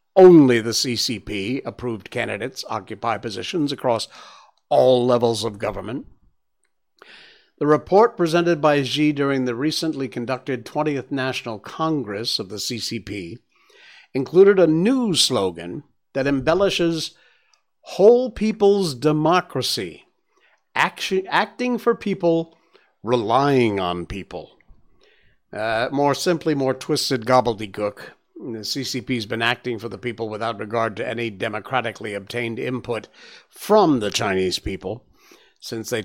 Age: 50-69